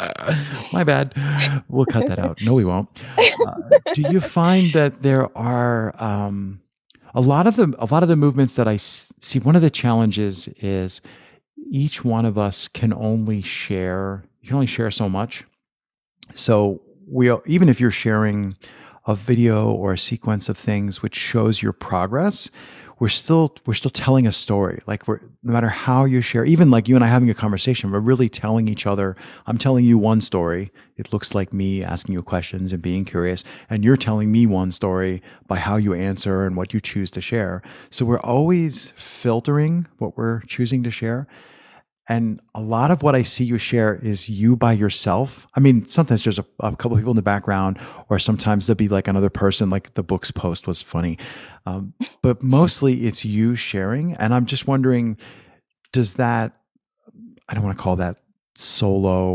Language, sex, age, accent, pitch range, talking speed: English, male, 50-69, American, 100-130 Hz, 190 wpm